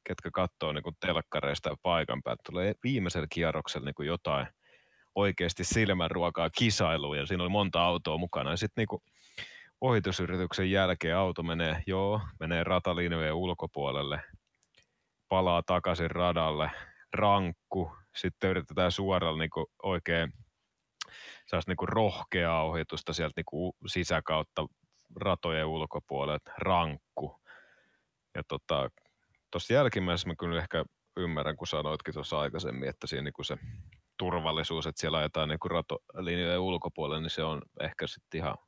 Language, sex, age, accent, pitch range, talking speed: Finnish, male, 30-49, native, 80-90 Hz, 120 wpm